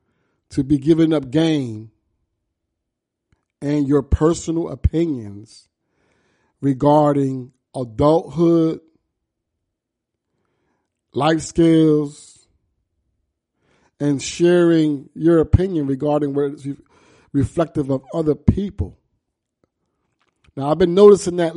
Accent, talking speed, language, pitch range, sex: American, 80 wpm, English, 115-160 Hz, male